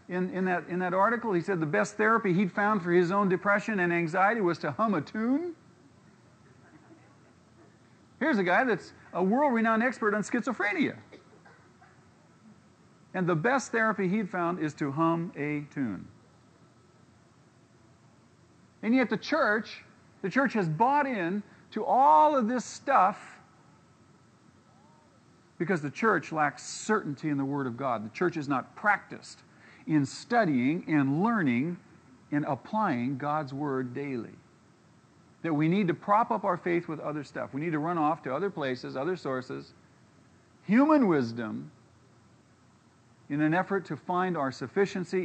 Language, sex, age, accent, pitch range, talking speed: English, male, 50-69, American, 130-200 Hz, 145 wpm